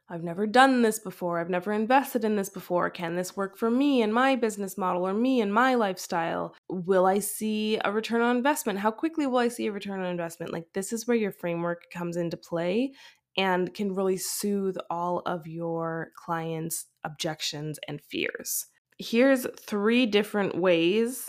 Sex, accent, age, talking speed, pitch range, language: female, American, 20-39, 185 wpm, 180-225 Hz, English